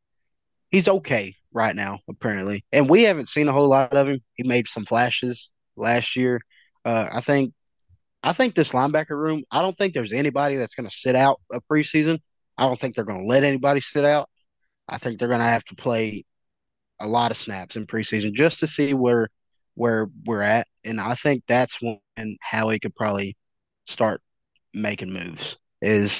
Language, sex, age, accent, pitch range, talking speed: English, male, 20-39, American, 110-140 Hz, 190 wpm